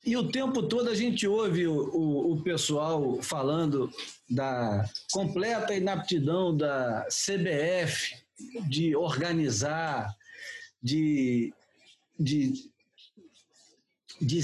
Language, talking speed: Portuguese, 85 wpm